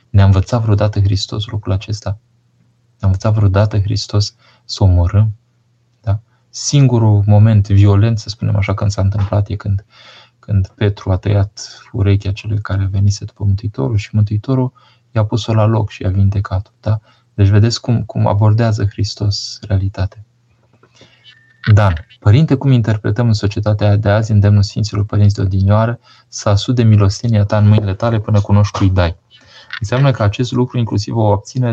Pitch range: 100-120 Hz